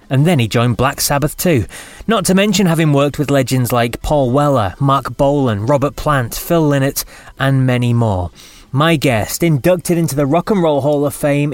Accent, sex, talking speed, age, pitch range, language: British, male, 190 wpm, 20-39, 125-165 Hz, English